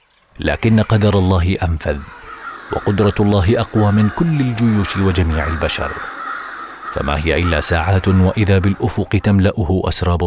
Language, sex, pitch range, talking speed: Arabic, male, 90-110 Hz, 115 wpm